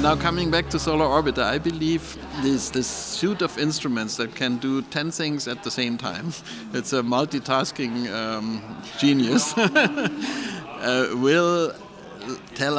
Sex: male